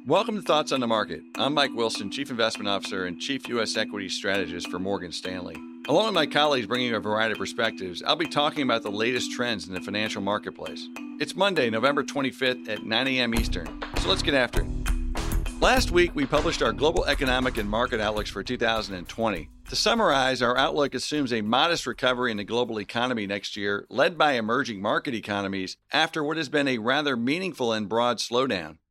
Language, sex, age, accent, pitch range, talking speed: English, male, 50-69, American, 110-150 Hz, 195 wpm